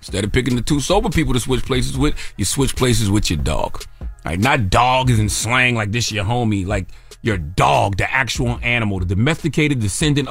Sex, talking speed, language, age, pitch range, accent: male, 210 wpm, English, 30-49, 115-170 Hz, American